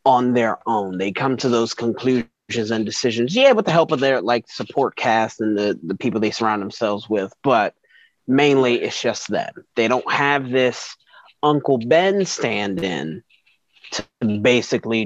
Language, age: English, 30-49